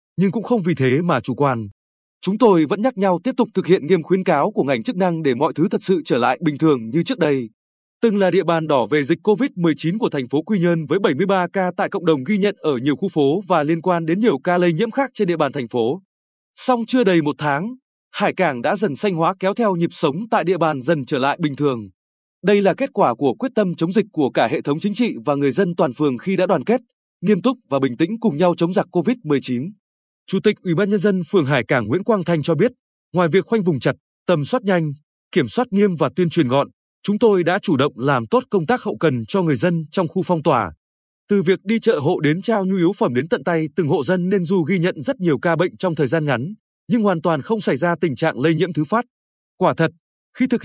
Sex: male